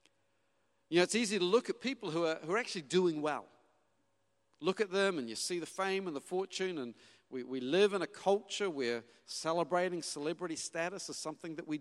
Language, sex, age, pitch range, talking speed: English, male, 40-59, 150-205 Hz, 210 wpm